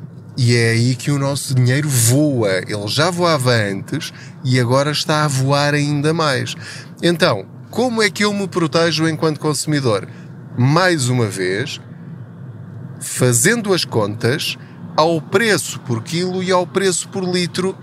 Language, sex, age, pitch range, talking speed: Portuguese, male, 20-39, 130-170 Hz, 145 wpm